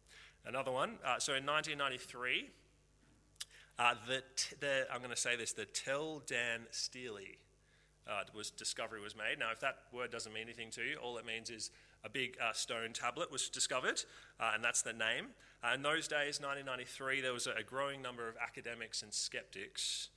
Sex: male